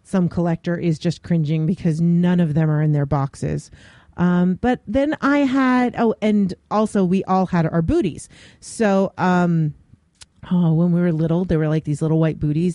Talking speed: 185 wpm